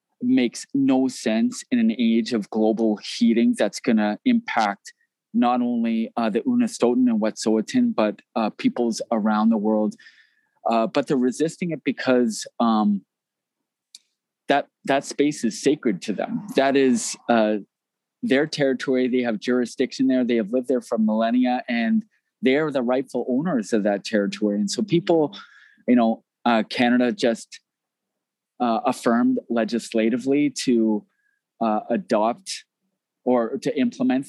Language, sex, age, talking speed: English, male, 20-39, 140 wpm